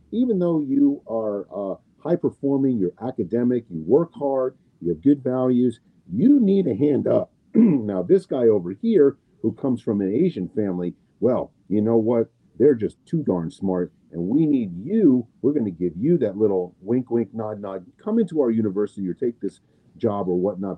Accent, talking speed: American, 190 wpm